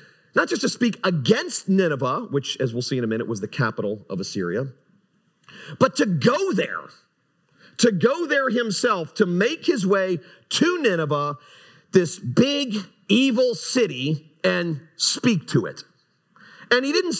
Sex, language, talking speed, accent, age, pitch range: male, English, 150 wpm, American, 40-59, 155-220 Hz